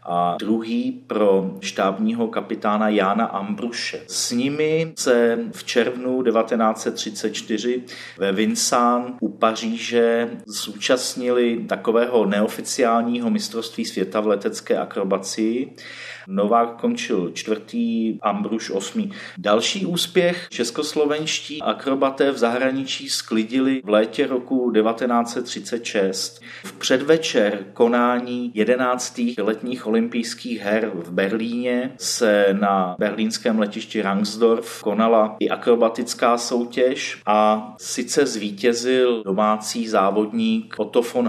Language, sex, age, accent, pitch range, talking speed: Czech, male, 40-59, native, 110-125 Hz, 95 wpm